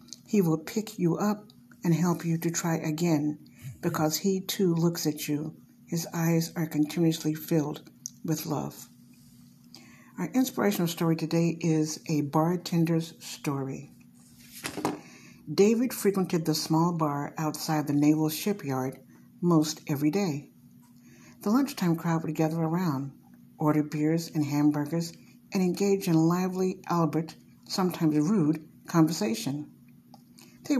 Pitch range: 150-180 Hz